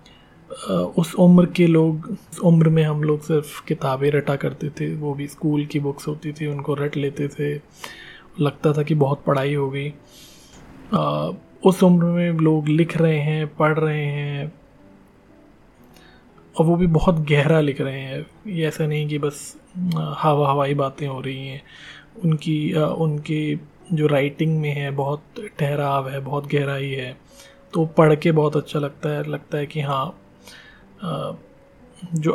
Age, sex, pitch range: 20-39, male, 140-155 Hz